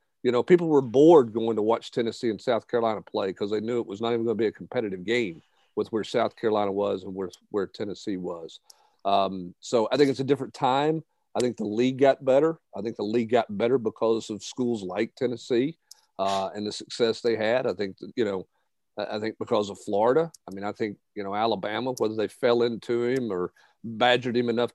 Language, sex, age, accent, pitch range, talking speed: English, male, 50-69, American, 110-135 Hz, 225 wpm